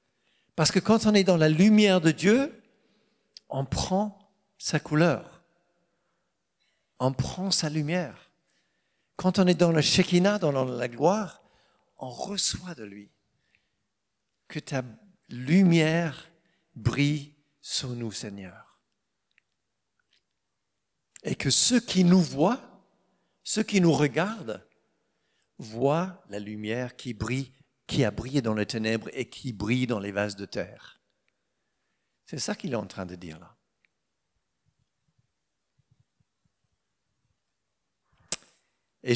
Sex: male